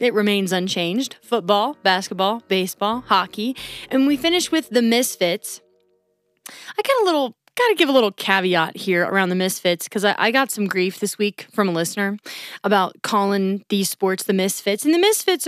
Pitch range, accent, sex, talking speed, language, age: 195-265 Hz, American, female, 180 wpm, English, 20-39